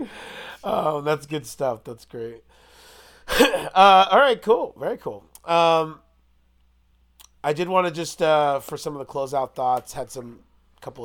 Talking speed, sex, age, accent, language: 150 wpm, male, 30-49, American, English